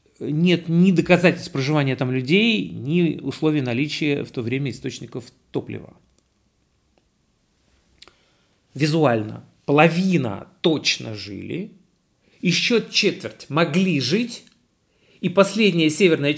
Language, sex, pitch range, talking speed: Russian, male, 120-160 Hz, 90 wpm